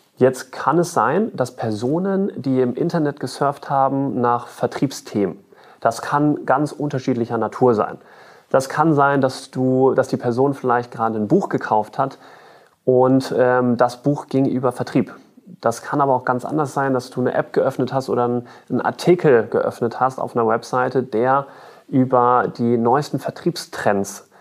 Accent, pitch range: German, 120-140 Hz